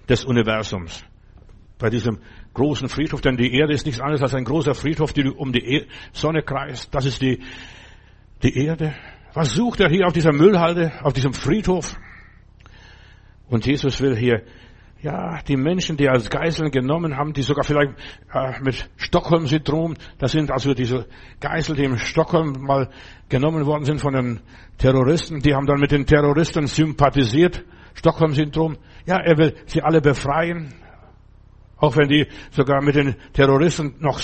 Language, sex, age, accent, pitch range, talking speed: German, male, 60-79, German, 125-155 Hz, 160 wpm